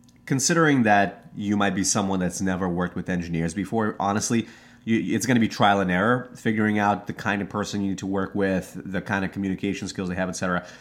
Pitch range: 95-115 Hz